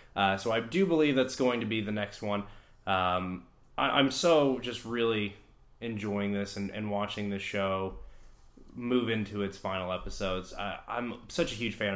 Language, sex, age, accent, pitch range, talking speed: English, male, 20-39, American, 95-125 Hz, 180 wpm